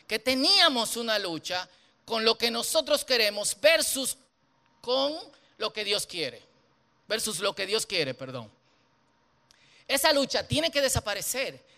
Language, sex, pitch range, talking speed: Spanish, male, 185-270 Hz, 130 wpm